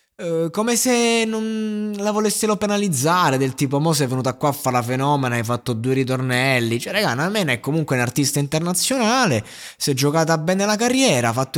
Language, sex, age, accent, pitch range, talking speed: Italian, male, 20-39, native, 130-165 Hz, 185 wpm